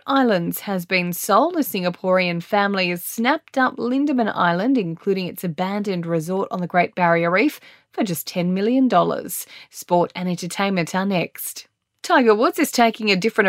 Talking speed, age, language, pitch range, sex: 160 wpm, 20-39, English, 170-220 Hz, female